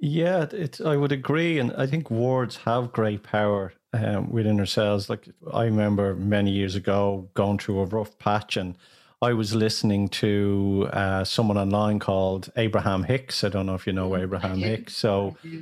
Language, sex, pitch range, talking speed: English, male, 100-125 Hz, 175 wpm